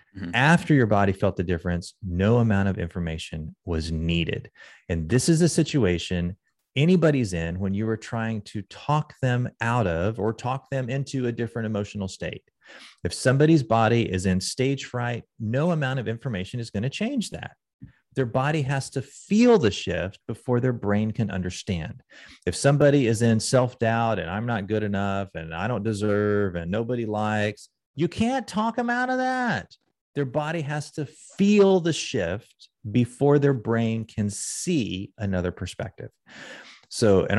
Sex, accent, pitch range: male, American, 95-135 Hz